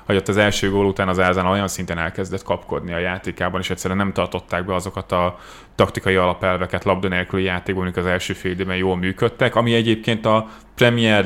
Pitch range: 95-105 Hz